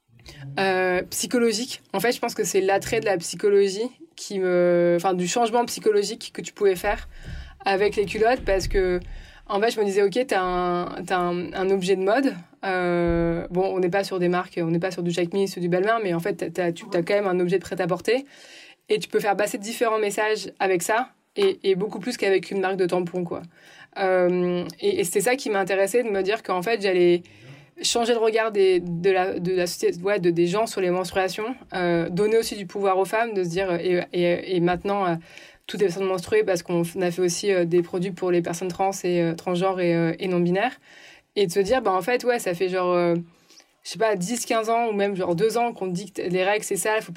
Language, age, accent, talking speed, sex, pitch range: French, 20-39, French, 245 wpm, female, 180-220 Hz